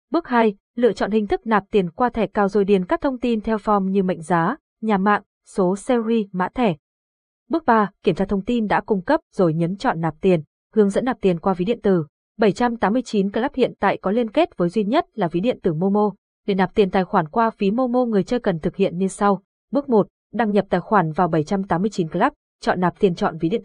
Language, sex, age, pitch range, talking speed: Vietnamese, female, 20-39, 185-230 Hz, 240 wpm